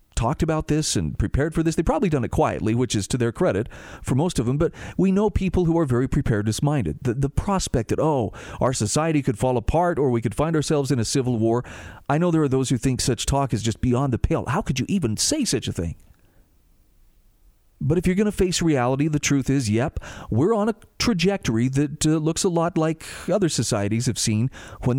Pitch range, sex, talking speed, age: 110-150 Hz, male, 235 wpm, 40-59